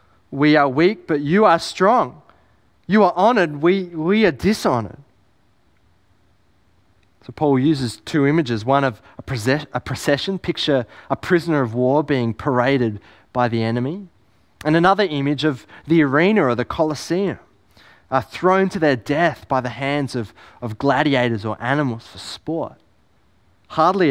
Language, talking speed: English, 150 wpm